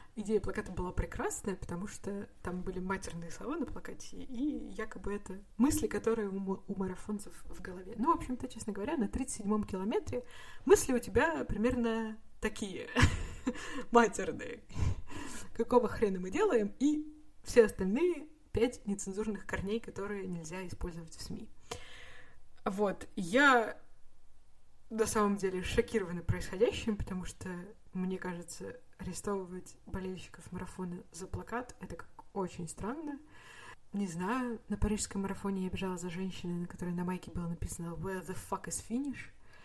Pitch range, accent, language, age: 180-230 Hz, native, Russian, 20-39